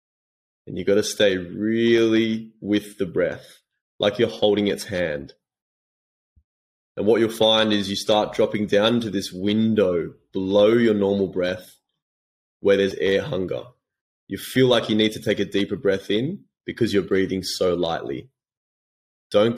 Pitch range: 90-105 Hz